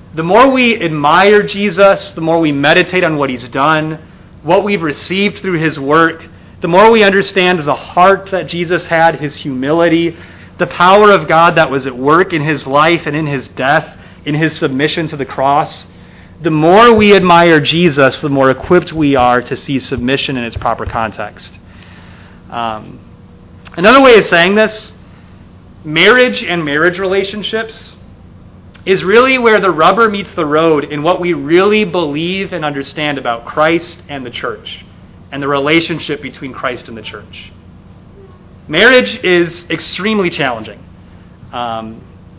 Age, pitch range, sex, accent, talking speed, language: 30-49, 120-175 Hz, male, American, 155 wpm, English